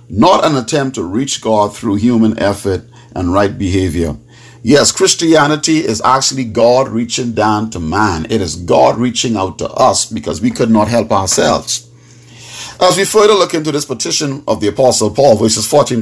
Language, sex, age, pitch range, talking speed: English, male, 50-69, 110-145 Hz, 175 wpm